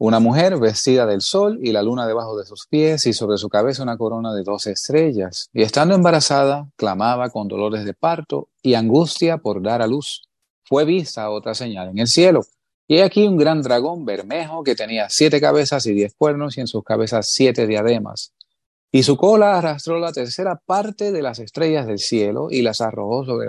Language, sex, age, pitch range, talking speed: English, male, 30-49, 110-155 Hz, 200 wpm